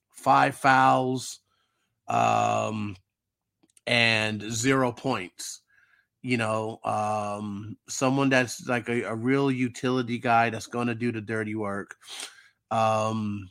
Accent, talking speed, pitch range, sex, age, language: American, 110 wpm, 110-135 Hz, male, 30-49, English